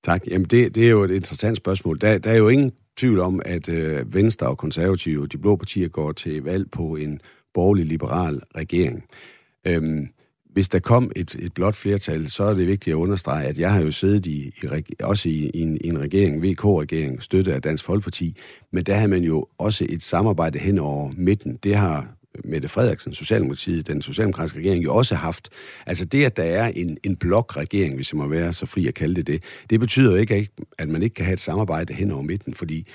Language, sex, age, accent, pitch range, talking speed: Danish, male, 50-69, native, 80-105 Hz, 220 wpm